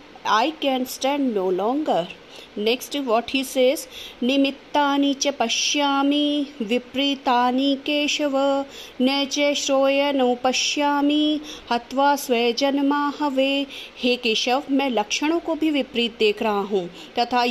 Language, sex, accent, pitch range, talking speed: Hindi, female, native, 235-285 Hz, 115 wpm